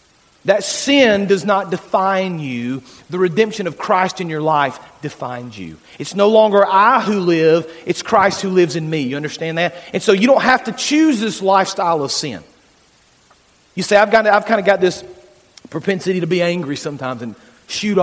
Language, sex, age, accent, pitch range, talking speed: English, male, 40-59, American, 160-220 Hz, 185 wpm